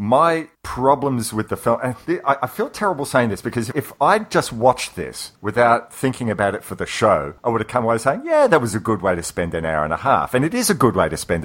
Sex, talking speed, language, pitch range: male, 265 wpm, English, 95-120 Hz